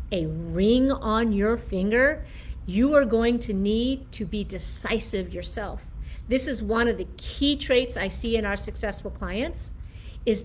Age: 50-69